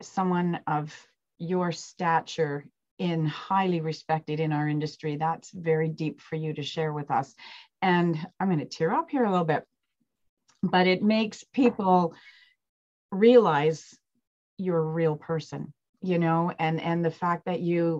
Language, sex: English, female